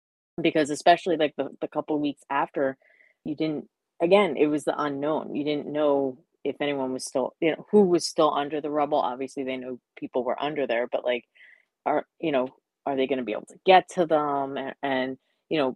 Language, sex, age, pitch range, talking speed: English, female, 30-49, 130-165 Hz, 215 wpm